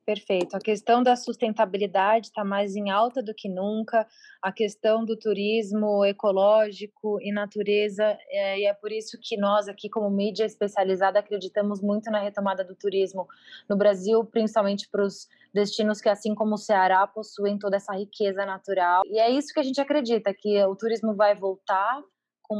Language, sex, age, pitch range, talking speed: Portuguese, female, 20-39, 200-225 Hz, 175 wpm